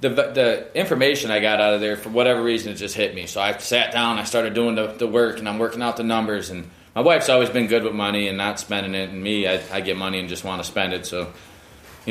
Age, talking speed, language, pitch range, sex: 20-39, 280 wpm, English, 95-115 Hz, male